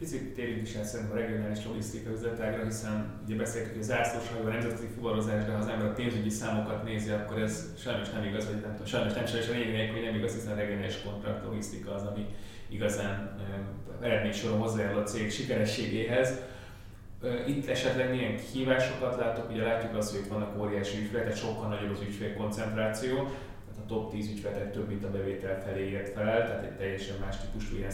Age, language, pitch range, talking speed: 20-39, Hungarian, 105-120 Hz, 180 wpm